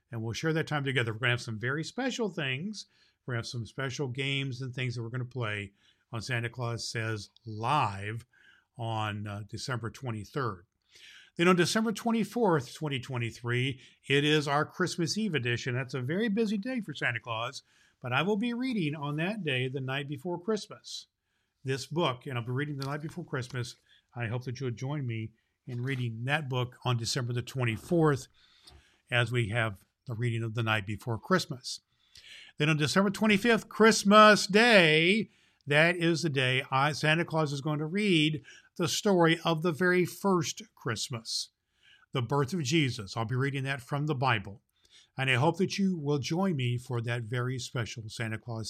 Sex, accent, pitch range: male, American, 120-165 Hz